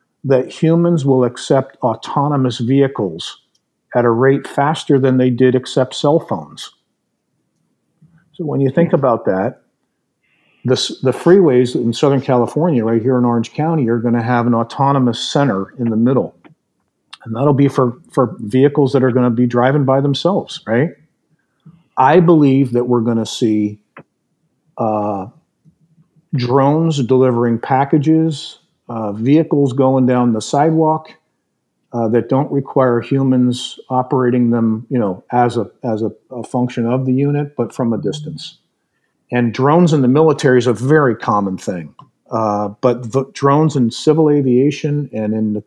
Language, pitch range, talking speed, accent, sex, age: English, 120-140 Hz, 145 wpm, American, male, 50-69